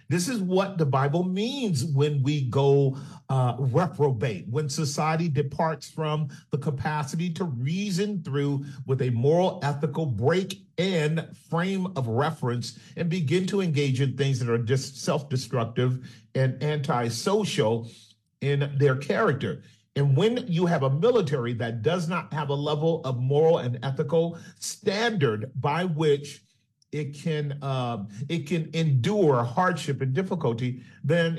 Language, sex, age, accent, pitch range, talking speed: English, male, 40-59, American, 135-170 Hz, 140 wpm